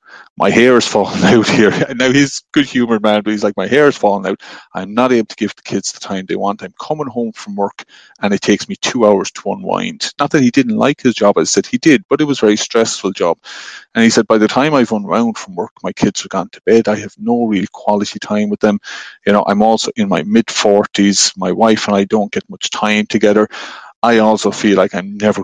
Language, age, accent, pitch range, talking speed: English, 30-49, Irish, 100-115 Hz, 250 wpm